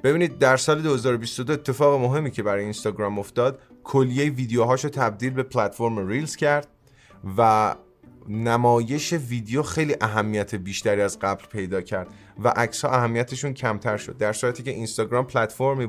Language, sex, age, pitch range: Persian, male, 30-49, 105-130 Hz